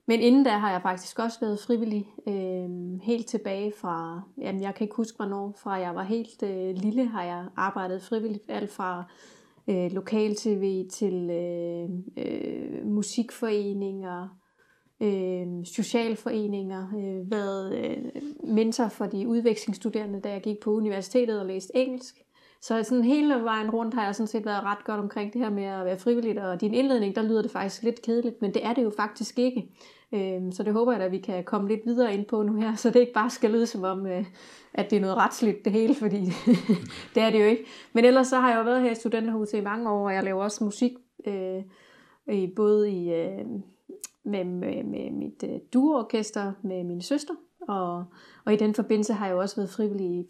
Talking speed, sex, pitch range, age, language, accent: 195 wpm, female, 190-230 Hz, 30-49, Danish, native